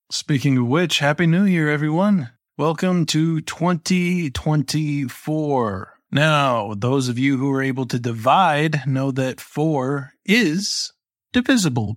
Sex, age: male, 20-39